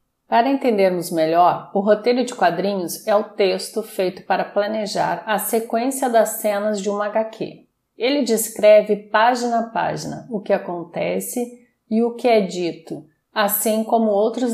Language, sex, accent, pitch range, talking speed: Portuguese, female, Brazilian, 190-225 Hz, 150 wpm